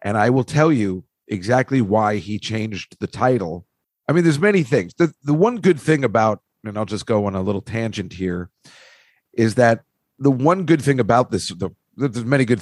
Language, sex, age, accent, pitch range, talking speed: English, male, 50-69, American, 110-145 Hz, 200 wpm